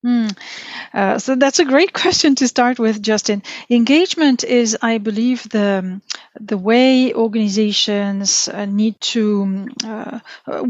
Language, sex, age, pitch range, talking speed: English, female, 40-59, 210-260 Hz, 130 wpm